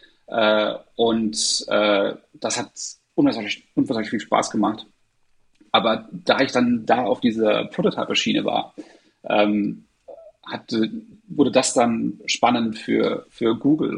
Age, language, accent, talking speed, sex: 40-59, German, German, 115 wpm, male